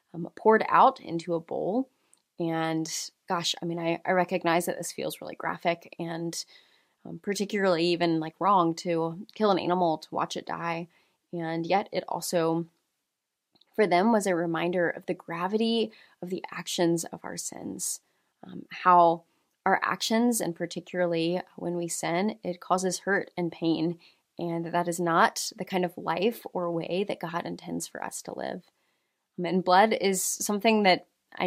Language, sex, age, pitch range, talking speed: English, female, 20-39, 170-190 Hz, 165 wpm